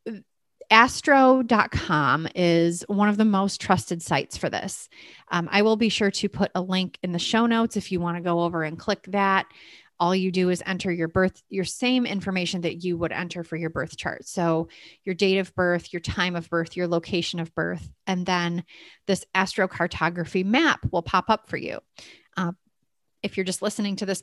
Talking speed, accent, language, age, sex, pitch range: 200 wpm, American, English, 30-49, female, 165-190 Hz